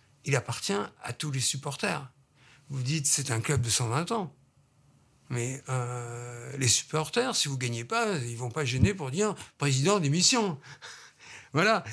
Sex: male